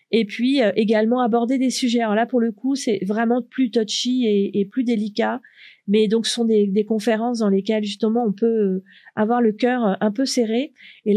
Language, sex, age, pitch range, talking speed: French, female, 40-59, 200-230 Hz, 210 wpm